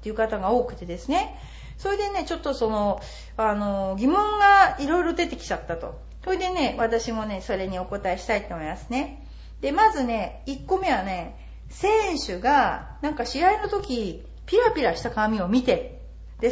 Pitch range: 225-365 Hz